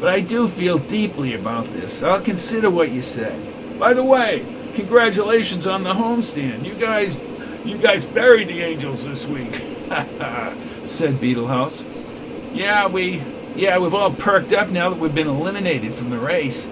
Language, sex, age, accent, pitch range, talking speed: English, male, 50-69, American, 135-205 Hz, 160 wpm